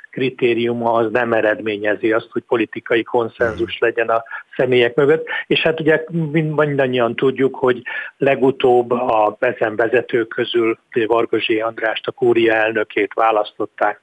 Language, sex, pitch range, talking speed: Hungarian, male, 115-140 Hz, 120 wpm